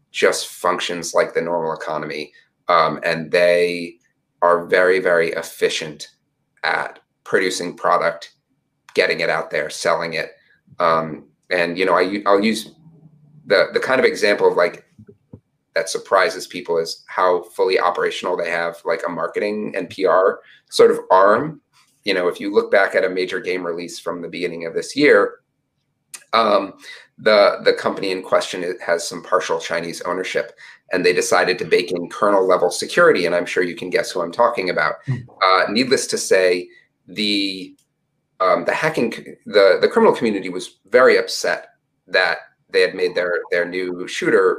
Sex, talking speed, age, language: male, 165 wpm, 30-49, English